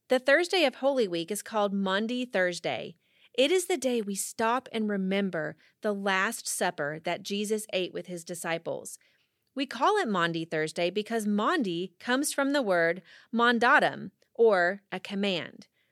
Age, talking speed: 30-49, 155 wpm